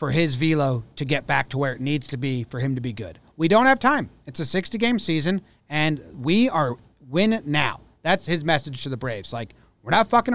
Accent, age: American, 30-49